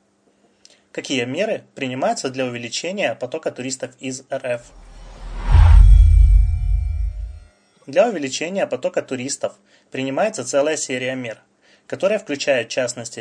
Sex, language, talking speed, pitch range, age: male, Russian, 95 wpm, 120-140 Hz, 20-39